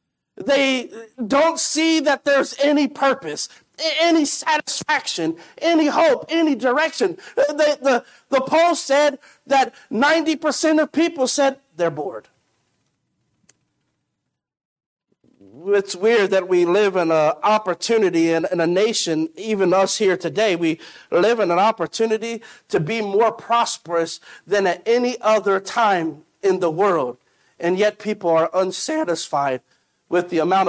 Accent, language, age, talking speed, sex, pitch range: American, English, 50-69, 125 wpm, male, 180-270 Hz